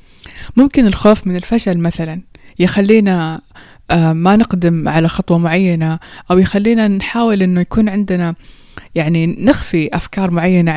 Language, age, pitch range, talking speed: Persian, 20-39, 170-210 Hz, 115 wpm